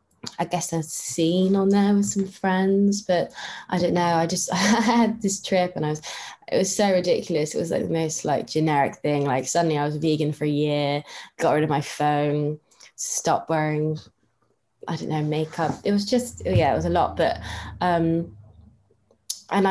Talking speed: 200 wpm